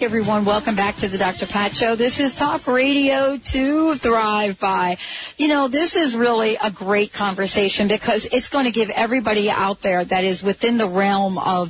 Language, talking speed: English, 190 wpm